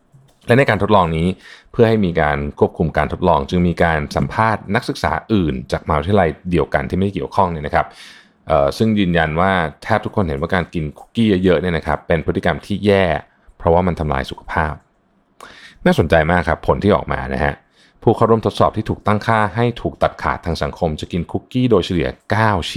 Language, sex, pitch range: Thai, male, 80-110 Hz